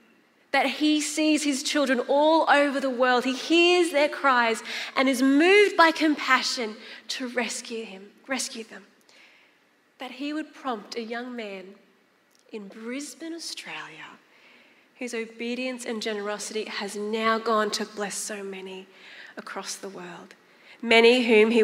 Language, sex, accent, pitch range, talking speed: English, female, Australian, 215-265 Hz, 135 wpm